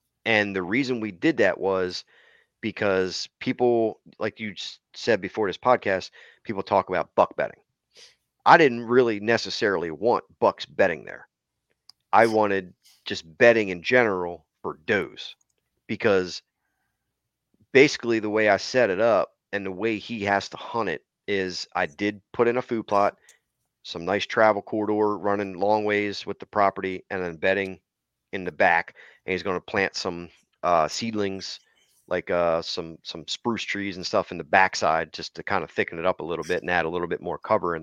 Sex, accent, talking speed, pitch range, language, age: male, American, 180 wpm, 95-110 Hz, English, 30-49